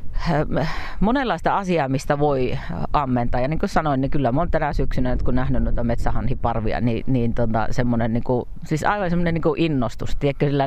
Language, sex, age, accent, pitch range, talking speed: Finnish, female, 30-49, native, 130-170 Hz, 165 wpm